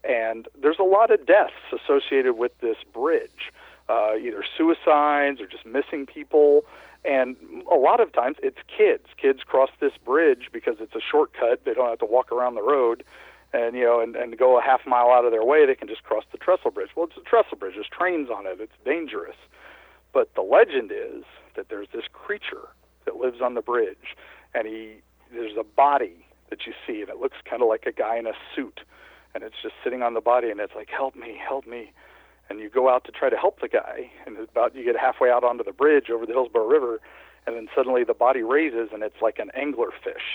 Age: 50-69